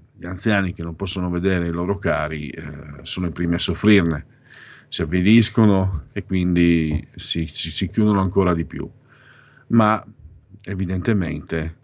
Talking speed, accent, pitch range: 140 wpm, native, 80-100 Hz